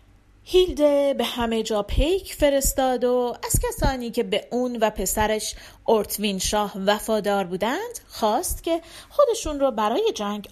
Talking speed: 135 wpm